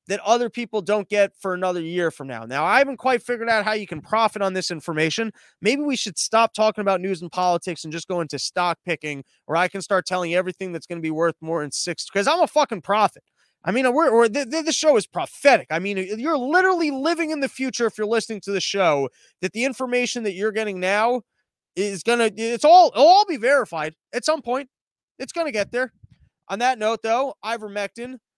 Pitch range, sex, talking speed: 165-225 Hz, male, 230 wpm